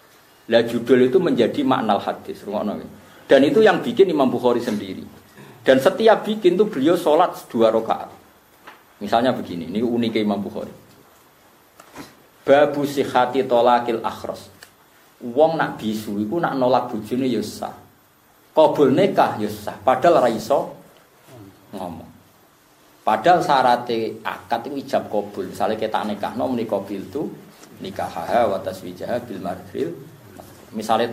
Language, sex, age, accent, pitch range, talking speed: Indonesian, male, 50-69, native, 120-180 Hz, 125 wpm